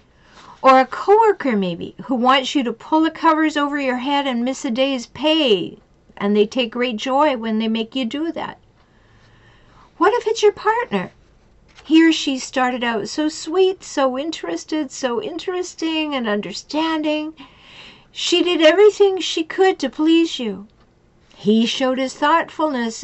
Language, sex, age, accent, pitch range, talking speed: English, female, 50-69, American, 215-305 Hz, 155 wpm